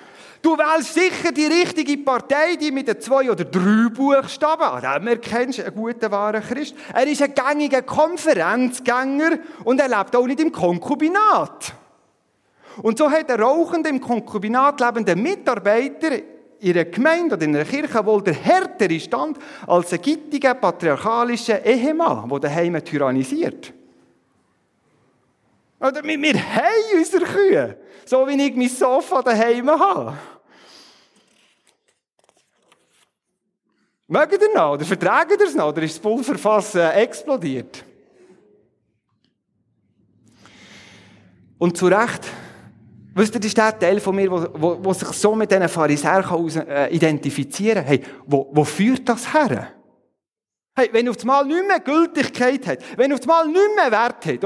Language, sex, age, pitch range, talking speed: German, male, 40-59, 180-300 Hz, 145 wpm